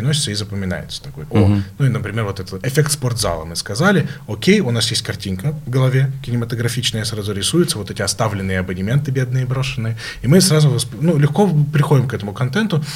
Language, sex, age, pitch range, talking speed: Russian, male, 20-39, 105-140 Hz, 180 wpm